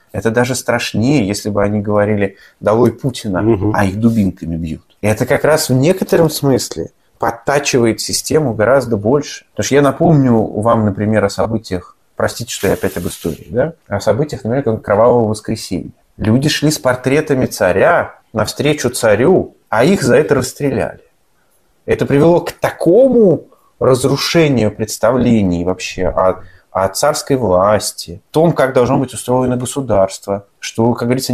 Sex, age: male, 30-49